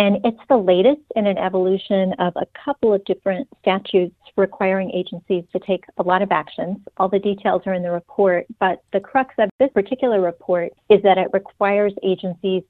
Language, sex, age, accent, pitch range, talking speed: English, female, 40-59, American, 170-195 Hz, 190 wpm